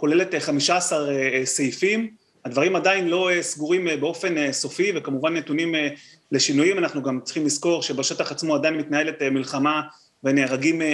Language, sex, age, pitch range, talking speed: Hebrew, male, 30-49, 150-195 Hz, 125 wpm